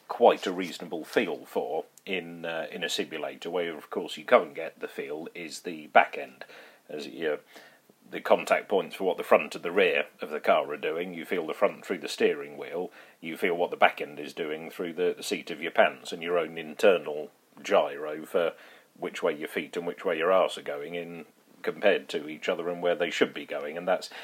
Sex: male